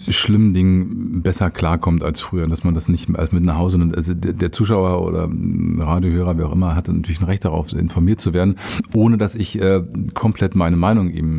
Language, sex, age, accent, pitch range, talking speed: German, male, 50-69, German, 85-110 Hz, 200 wpm